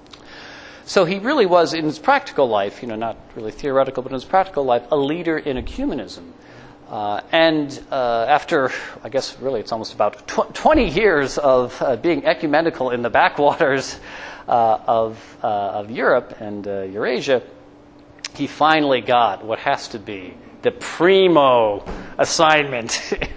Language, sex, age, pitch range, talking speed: English, male, 40-59, 115-160 Hz, 155 wpm